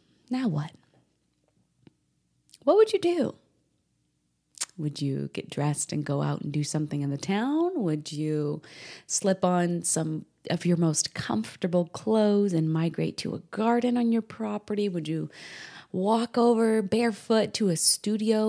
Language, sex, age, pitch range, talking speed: English, female, 20-39, 150-200 Hz, 145 wpm